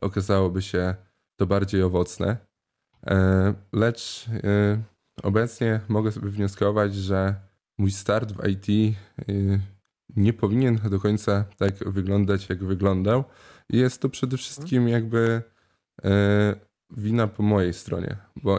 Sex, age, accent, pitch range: male, 20-39, native, 95-105 Hz